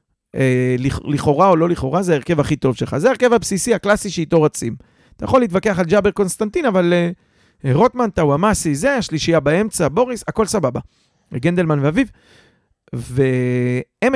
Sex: male